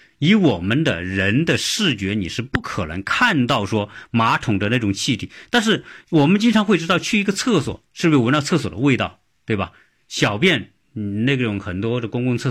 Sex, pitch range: male, 95-135 Hz